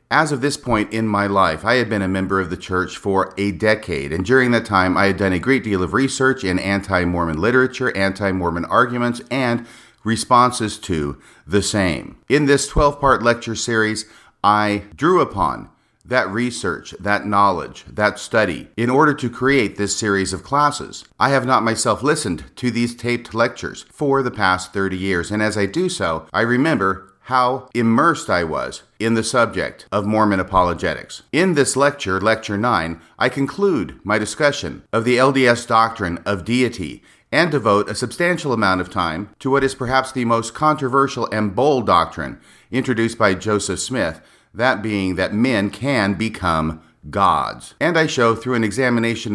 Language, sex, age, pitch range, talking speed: English, male, 50-69, 95-125 Hz, 175 wpm